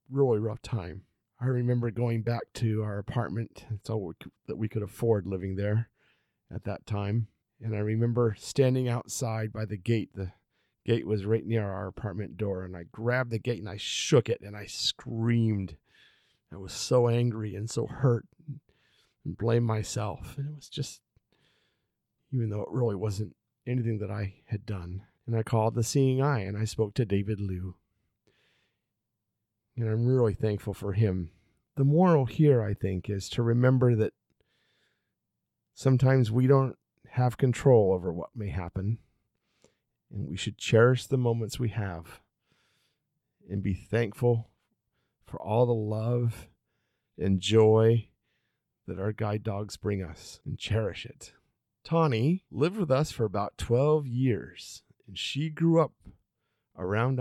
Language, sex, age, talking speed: English, male, 40-59, 160 wpm